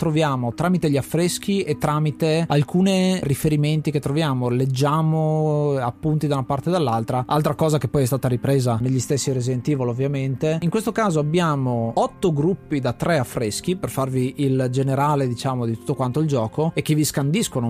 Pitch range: 135-160 Hz